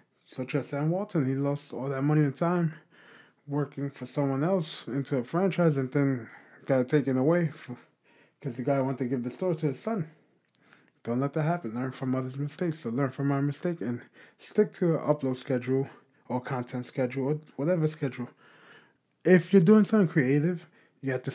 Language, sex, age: English, male, 20-39